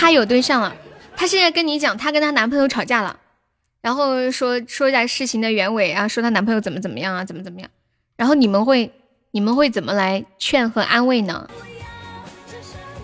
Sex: female